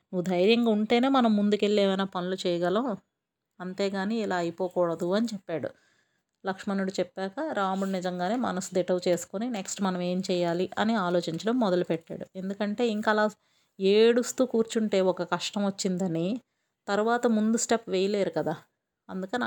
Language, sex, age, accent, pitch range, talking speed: Telugu, female, 30-49, native, 180-210 Hz, 125 wpm